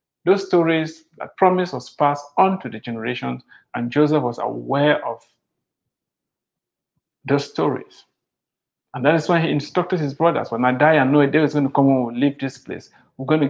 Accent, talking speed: Nigerian, 185 wpm